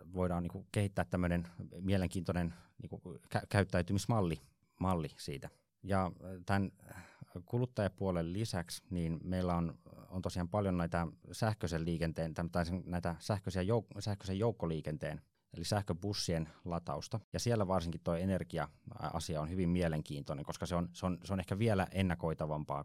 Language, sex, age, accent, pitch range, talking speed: Finnish, male, 30-49, native, 80-95 Hz, 125 wpm